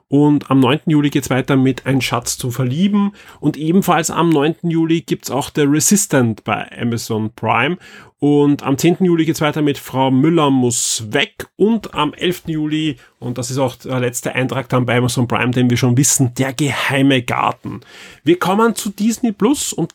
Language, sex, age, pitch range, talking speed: German, male, 30-49, 125-160 Hz, 195 wpm